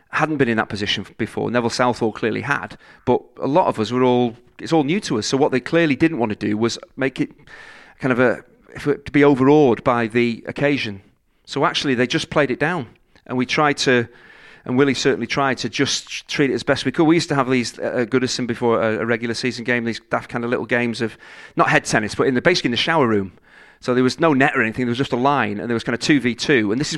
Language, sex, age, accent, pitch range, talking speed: English, male, 40-59, British, 120-150 Hz, 265 wpm